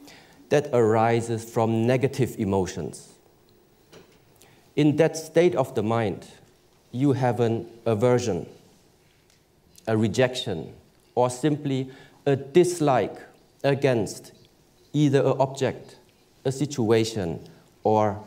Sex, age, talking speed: male, 50-69, 90 wpm